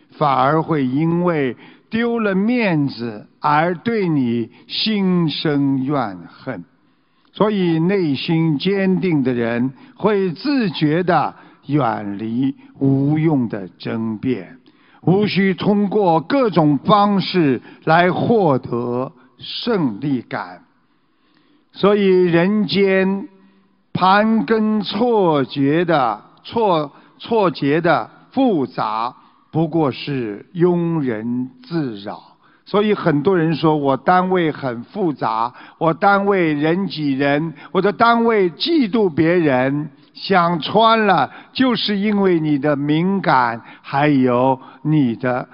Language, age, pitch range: Chinese, 60-79, 140-205 Hz